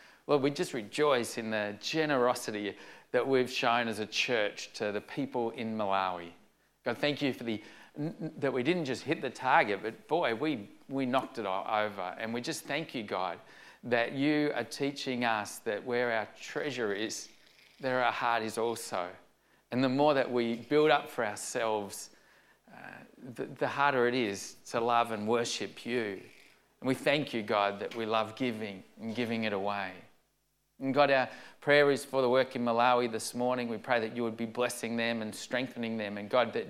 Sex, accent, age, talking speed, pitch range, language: male, Australian, 40-59, 195 wpm, 110-130 Hz, English